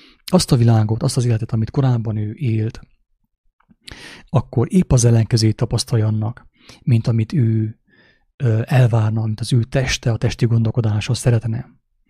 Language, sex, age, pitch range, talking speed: English, male, 30-49, 110-130 Hz, 140 wpm